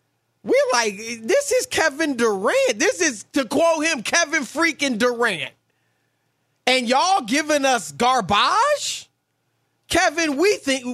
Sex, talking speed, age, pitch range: male, 120 wpm, 30-49, 215-280 Hz